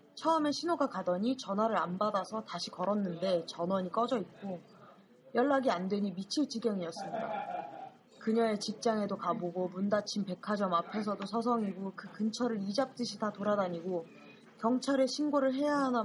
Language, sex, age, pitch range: Korean, female, 20-39, 195-250 Hz